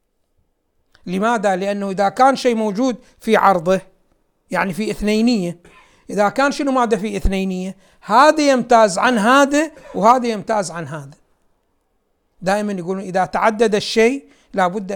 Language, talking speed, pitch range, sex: Arabic, 125 wpm, 195-260 Hz, male